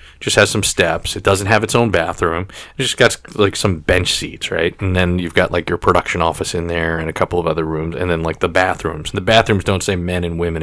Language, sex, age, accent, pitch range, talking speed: English, male, 30-49, American, 85-110 Hz, 265 wpm